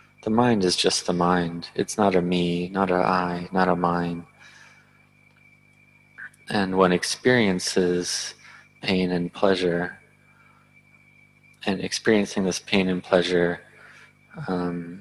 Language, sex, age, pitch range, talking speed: English, male, 20-39, 90-95 Hz, 115 wpm